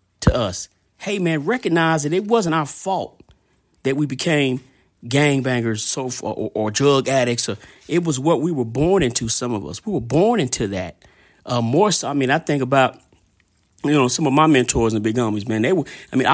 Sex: male